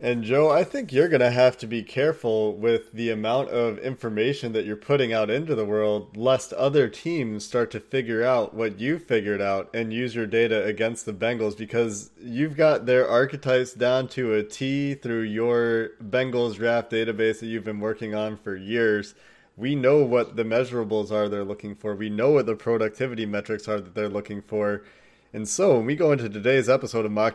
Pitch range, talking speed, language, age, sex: 110-130 Hz, 200 wpm, English, 20-39, male